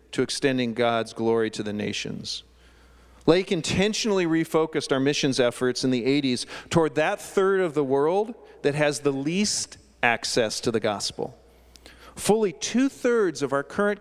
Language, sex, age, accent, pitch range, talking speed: English, male, 40-59, American, 105-155 Hz, 150 wpm